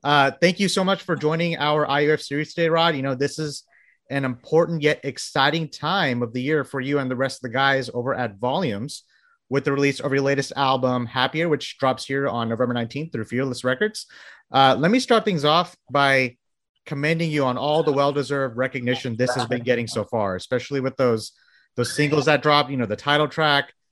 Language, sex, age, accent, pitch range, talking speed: English, male, 30-49, American, 130-155 Hz, 210 wpm